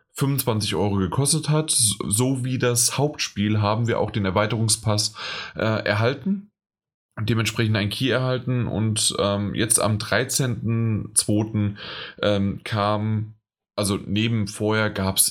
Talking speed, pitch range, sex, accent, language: 120 wpm, 100-115 Hz, male, German, German